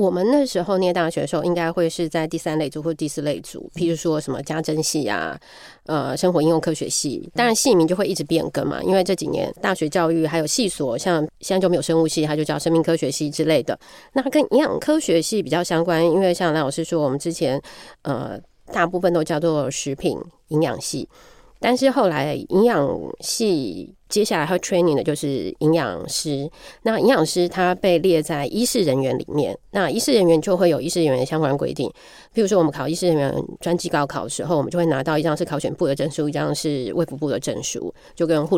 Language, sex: Chinese, female